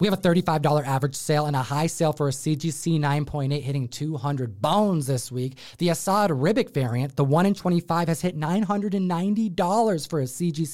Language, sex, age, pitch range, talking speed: English, male, 30-49, 150-210 Hz, 185 wpm